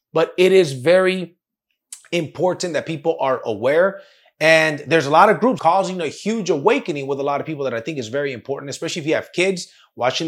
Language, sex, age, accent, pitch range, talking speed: English, male, 30-49, American, 140-190 Hz, 210 wpm